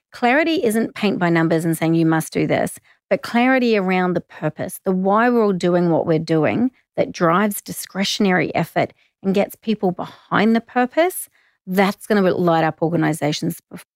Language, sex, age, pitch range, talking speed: English, female, 30-49, 170-210 Hz, 170 wpm